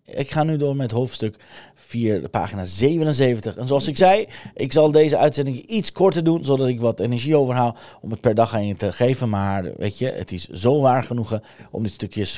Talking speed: 215 wpm